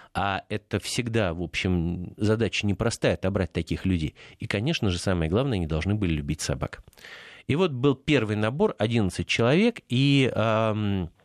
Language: Russian